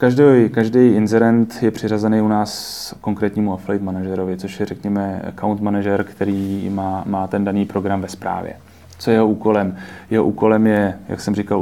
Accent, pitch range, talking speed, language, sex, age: native, 100-110 Hz, 170 wpm, Czech, male, 20-39